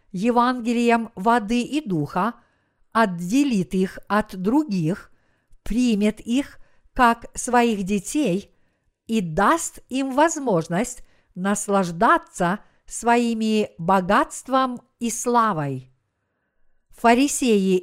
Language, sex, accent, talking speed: Russian, female, native, 75 wpm